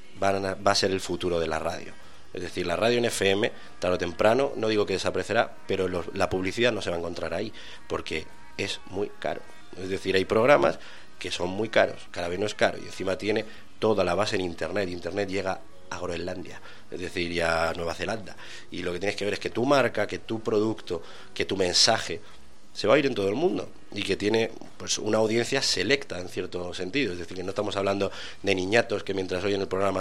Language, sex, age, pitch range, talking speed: Spanish, male, 30-49, 90-110 Hz, 225 wpm